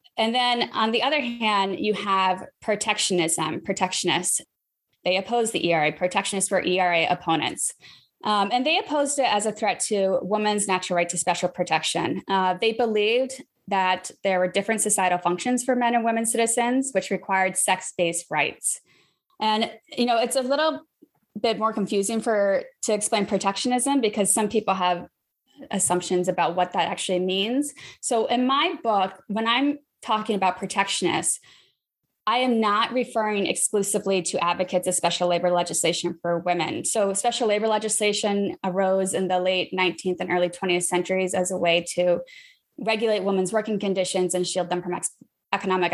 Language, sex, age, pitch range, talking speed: English, female, 20-39, 180-225 Hz, 160 wpm